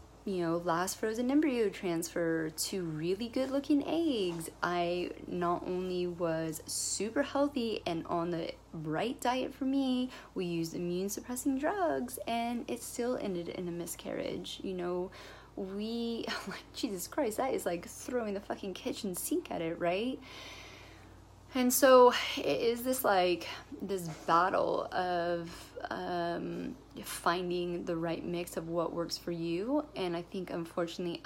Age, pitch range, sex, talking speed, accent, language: 30-49, 165-195 Hz, female, 145 wpm, American, English